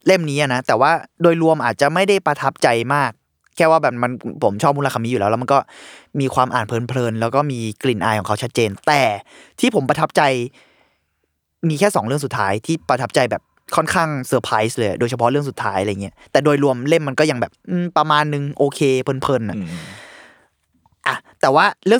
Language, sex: Thai, male